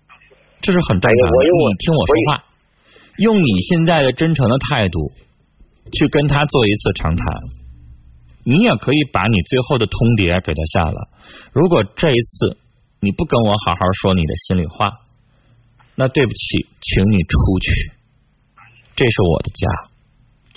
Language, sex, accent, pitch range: Chinese, male, native, 95-140 Hz